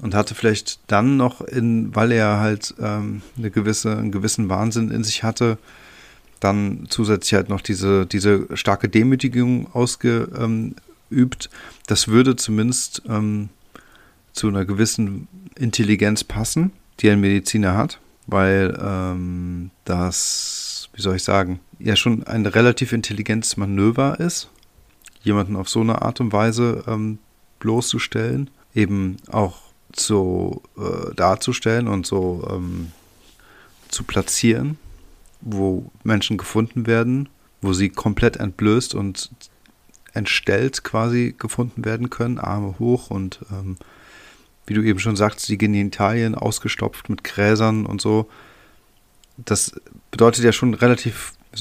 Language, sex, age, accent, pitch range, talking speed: German, male, 40-59, German, 100-115 Hz, 125 wpm